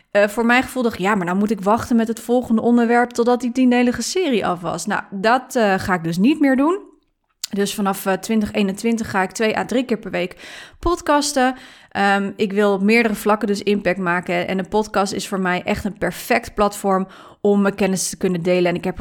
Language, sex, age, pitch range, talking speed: Dutch, female, 30-49, 185-235 Hz, 225 wpm